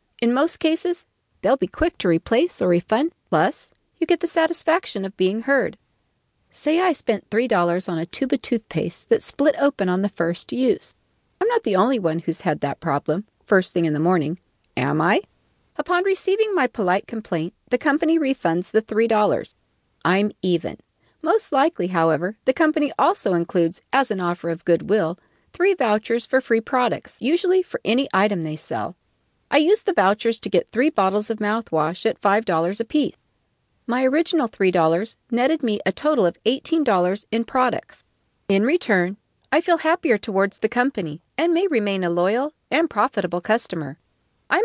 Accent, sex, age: American, female, 40-59